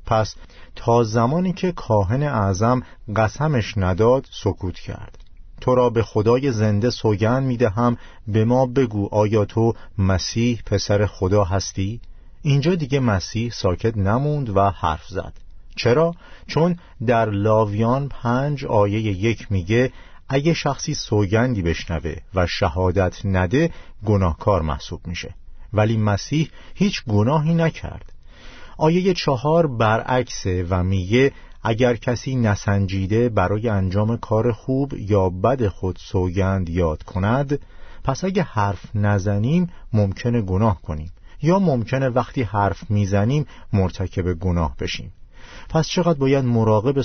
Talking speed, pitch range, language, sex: 120 wpm, 95-125 Hz, Persian, male